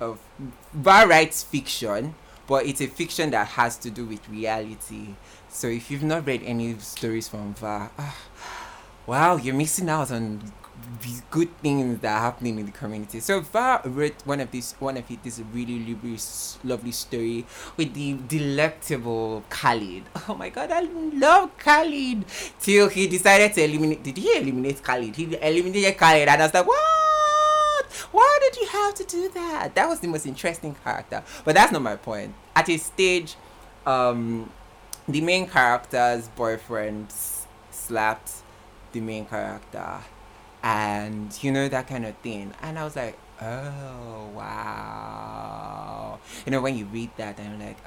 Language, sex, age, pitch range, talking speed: English, male, 20-39, 110-150 Hz, 160 wpm